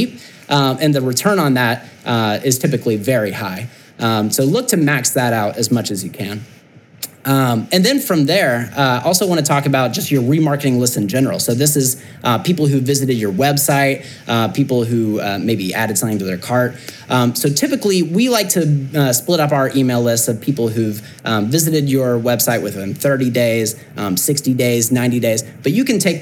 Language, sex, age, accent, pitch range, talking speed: English, male, 30-49, American, 120-150 Hz, 205 wpm